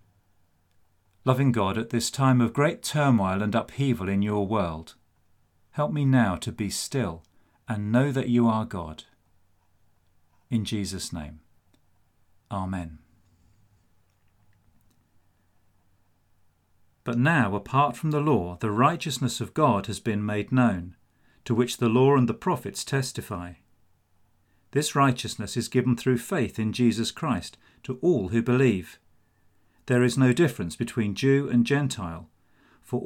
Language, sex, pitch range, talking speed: English, male, 95-125 Hz, 135 wpm